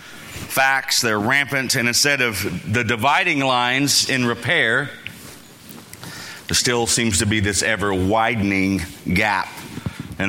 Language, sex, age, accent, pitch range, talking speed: English, male, 40-59, American, 110-135 Hz, 120 wpm